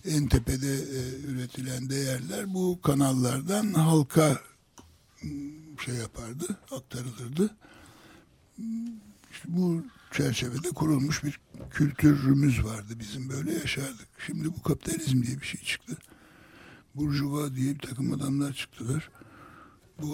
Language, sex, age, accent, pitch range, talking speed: Turkish, male, 60-79, native, 125-150 Hz, 100 wpm